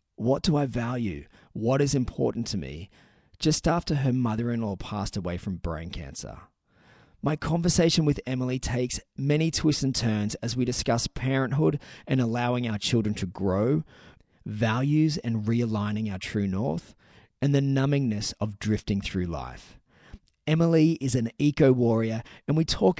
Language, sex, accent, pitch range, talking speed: English, male, Australian, 105-135 Hz, 150 wpm